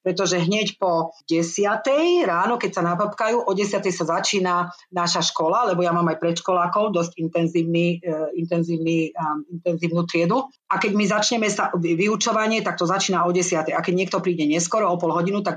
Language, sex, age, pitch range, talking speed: Slovak, female, 40-59, 165-215 Hz, 170 wpm